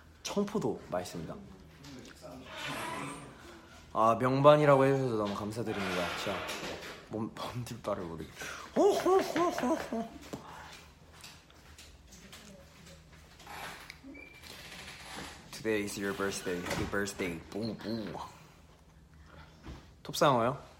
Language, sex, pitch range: Korean, male, 80-120 Hz